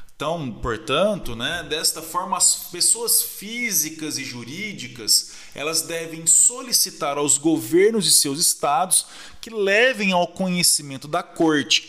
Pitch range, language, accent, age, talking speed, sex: 140-185 Hz, Portuguese, Brazilian, 20-39, 120 wpm, male